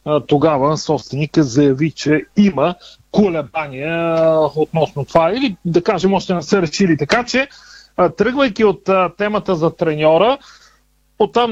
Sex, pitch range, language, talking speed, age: male, 160-200 Hz, Bulgarian, 120 wpm, 40-59